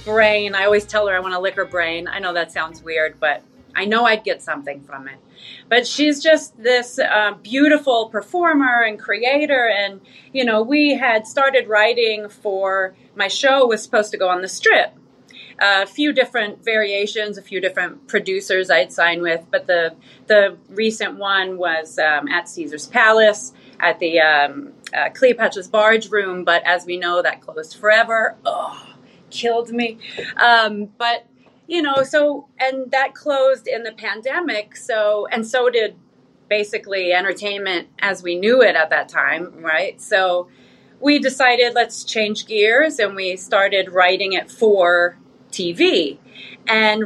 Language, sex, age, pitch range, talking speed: English, female, 30-49, 185-240 Hz, 165 wpm